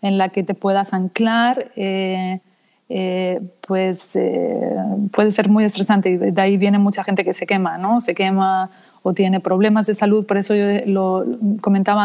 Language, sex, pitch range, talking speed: Spanish, female, 185-210 Hz, 180 wpm